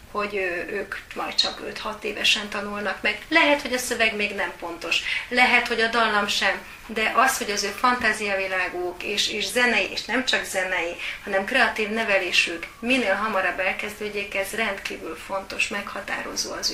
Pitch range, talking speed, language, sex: 190-225 Hz, 165 wpm, Hungarian, female